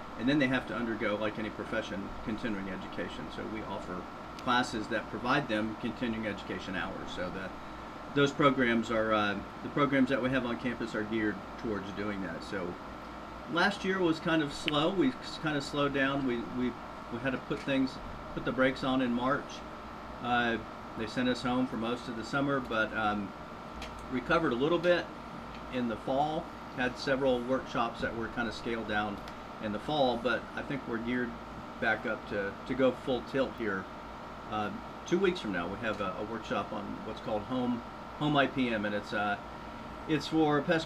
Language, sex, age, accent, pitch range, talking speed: English, male, 40-59, American, 105-135 Hz, 190 wpm